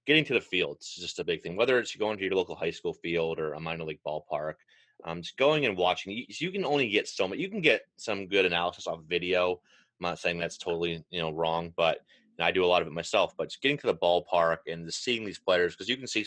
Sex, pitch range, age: male, 80-100 Hz, 30-49